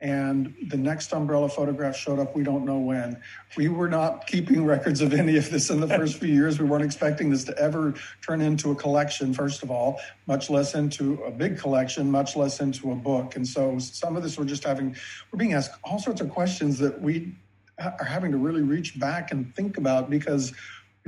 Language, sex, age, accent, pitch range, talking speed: English, male, 50-69, American, 135-155 Hz, 220 wpm